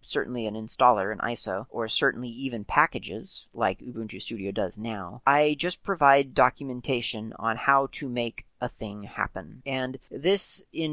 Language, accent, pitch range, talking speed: English, American, 115-145 Hz, 155 wpm